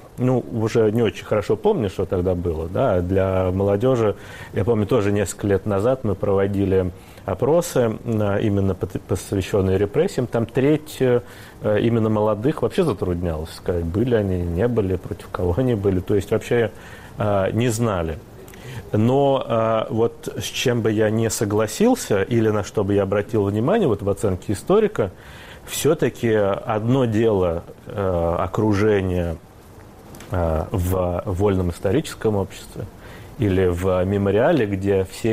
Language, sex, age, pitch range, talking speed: Russian, male, 30-49, 95-120 Hz, 130 wpm